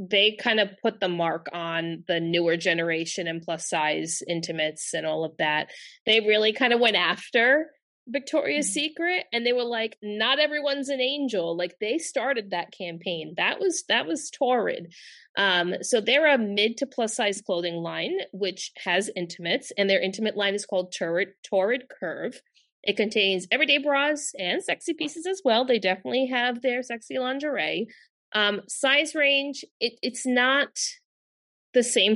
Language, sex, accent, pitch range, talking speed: English, female, American, 180-255 Hz, 165 wpm